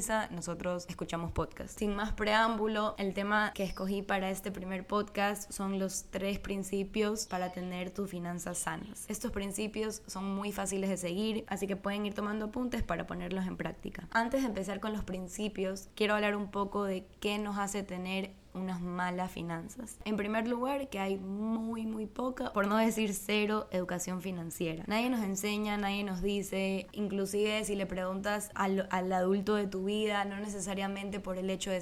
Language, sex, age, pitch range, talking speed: Spanish, female, 10-29, 185-210 Hz, 175 wpm